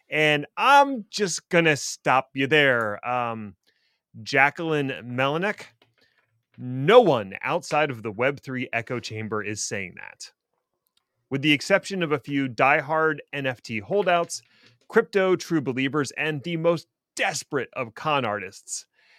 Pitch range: 125-170 Hz